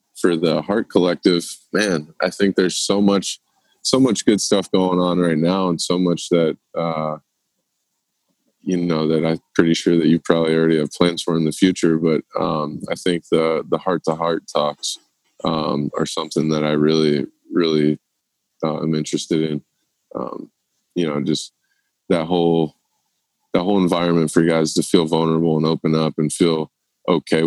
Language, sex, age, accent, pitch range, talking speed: English, male, 20-39, American, 80-85 Hz, 175 wpm